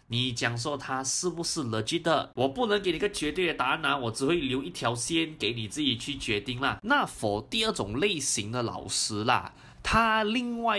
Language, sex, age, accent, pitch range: Chinese, male, 20-39, native, 115-180 Hz